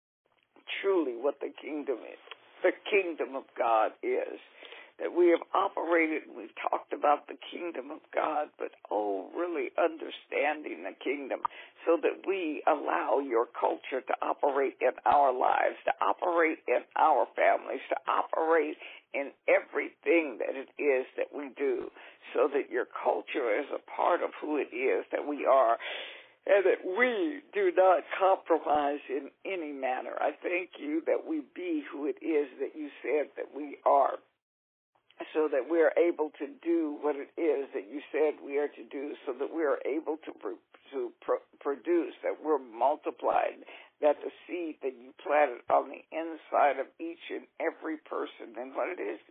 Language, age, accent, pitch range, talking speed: English, 60-79, American, 295-445 Hz, 165 wpm